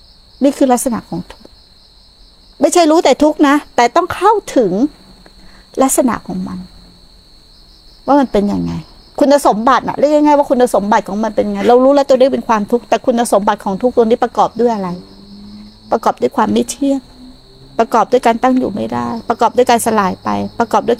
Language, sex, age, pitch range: Thai, female, 60-79, 195-270 Hz